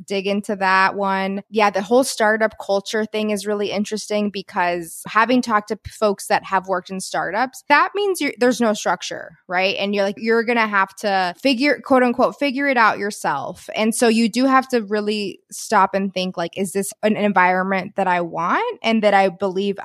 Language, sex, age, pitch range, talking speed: English, female, 20-39, 195-235 Hz, 195 wpm